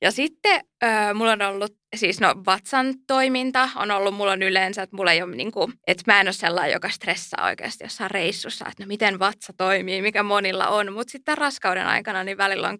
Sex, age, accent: female, 20-39, native